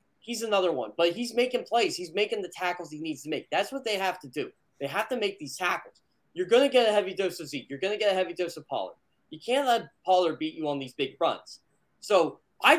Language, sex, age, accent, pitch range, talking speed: English, male, 20-39, American, 165-230 Hz, 265 wpm